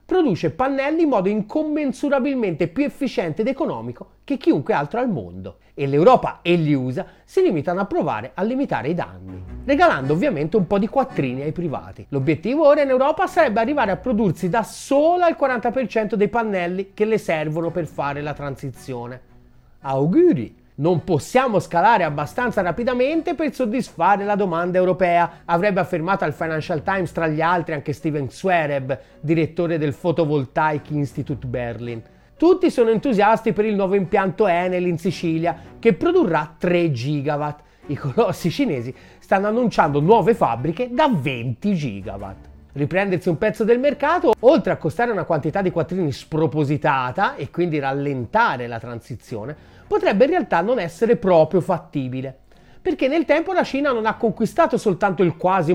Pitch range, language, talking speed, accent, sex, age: 150-230 Hz, Italian, 155 wpm, native, male, 30-49